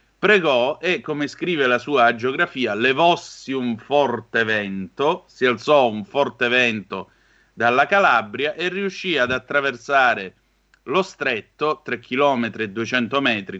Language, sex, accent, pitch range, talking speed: Italian, male, native, 115-150 Hz, 130 wpm